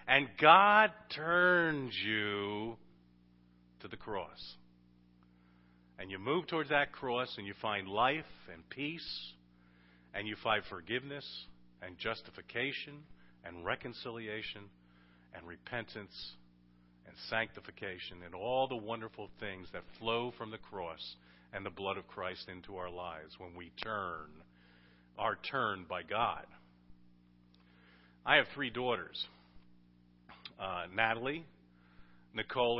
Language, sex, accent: English, male, American